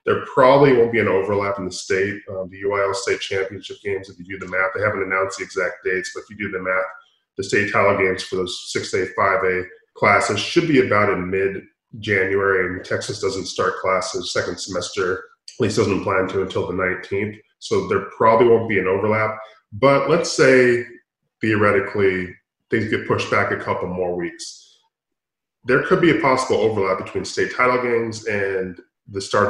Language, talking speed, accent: English, 190 wpm, American